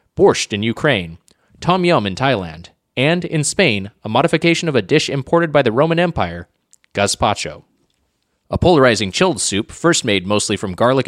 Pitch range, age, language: 105-155 Hz, 30-49, English